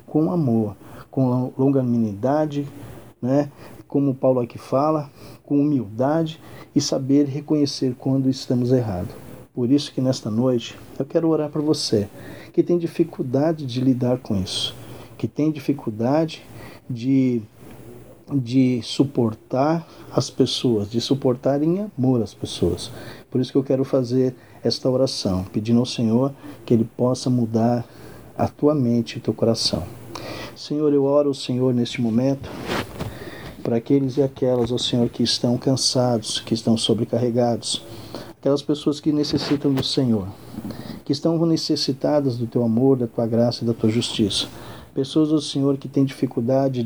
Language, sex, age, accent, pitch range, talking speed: Portuguese, male, 50-69, Brazilian, 120-140 Hz, 145 wpm